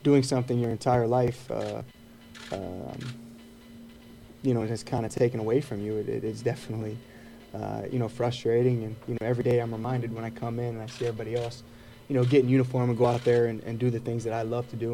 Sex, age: male, 20-39